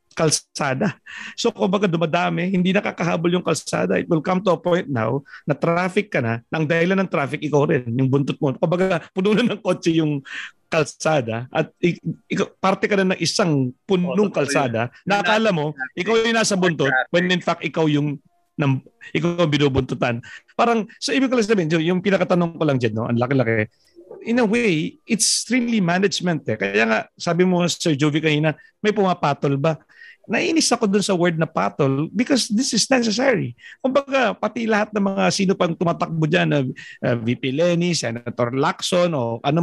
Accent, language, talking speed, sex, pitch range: native, Filipino, 185 wpm, male, 145-205 Hz